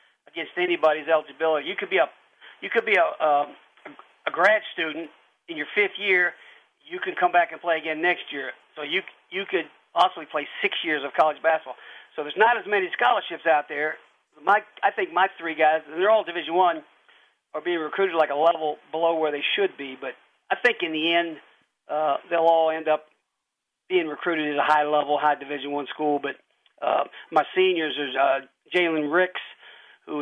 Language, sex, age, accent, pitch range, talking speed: English, male, 50-69, American, 155-185 Hz, 195 wpm